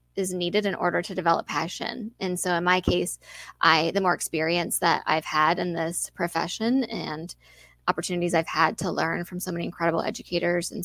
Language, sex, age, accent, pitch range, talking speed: English, female, 20-39, American, 170-200 Hz, 190 wpm